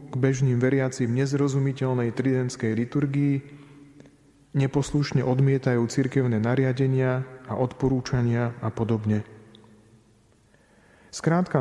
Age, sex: 30-49, male